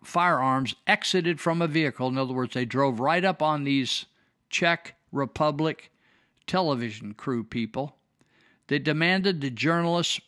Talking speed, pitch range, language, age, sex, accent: 135 wpm, 140-205 Hz, English, 50-69, male, American